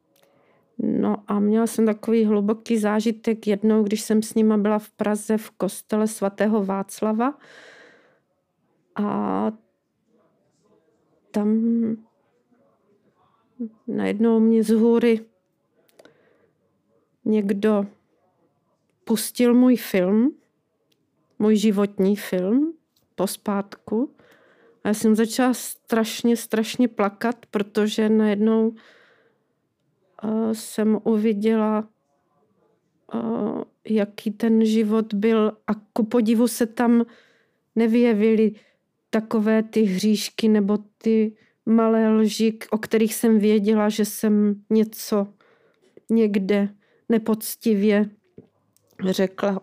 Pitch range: 215-230 Hz